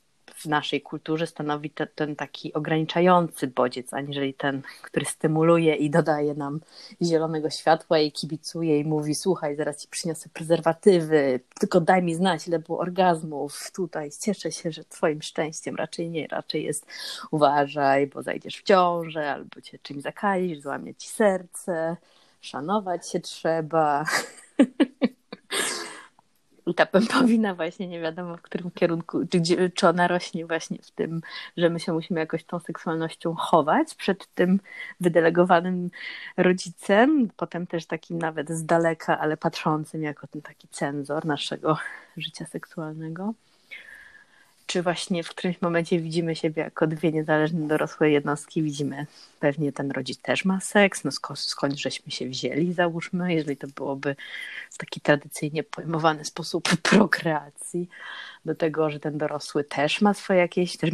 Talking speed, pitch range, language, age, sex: 145 wpm, 150-180 Hz, Polish, 30-49, female